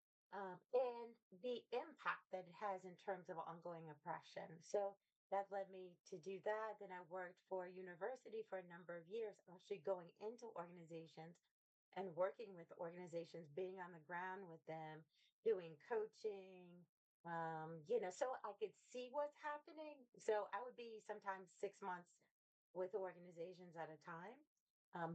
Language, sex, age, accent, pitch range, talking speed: English, female, 30-49, American, 170-205 Hz, 160 wpm